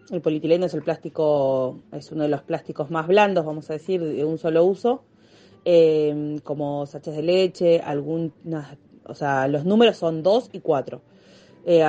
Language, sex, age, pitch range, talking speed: Spanish, female, 30-49, 150-180 Hz, 170 wpm